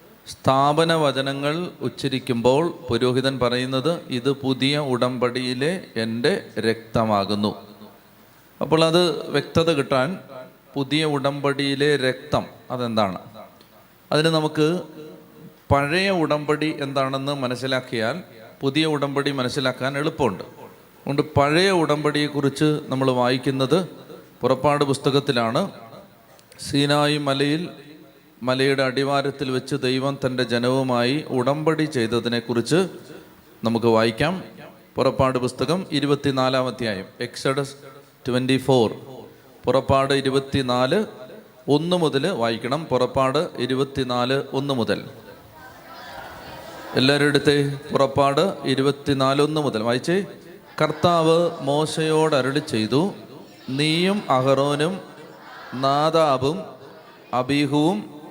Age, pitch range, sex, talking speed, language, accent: 30-49, 130-150 Hz, male, 80 wpm, Malayalam, native